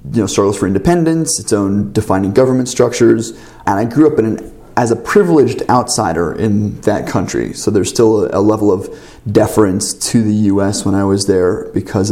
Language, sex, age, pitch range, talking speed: English, male, 20-39, 105-120 Hz, 200 wpm